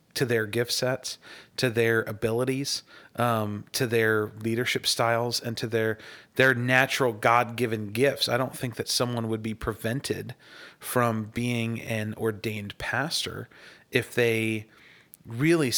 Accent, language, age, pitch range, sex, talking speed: American, English, 40-59, 110-125 Hz, male, 135 wpm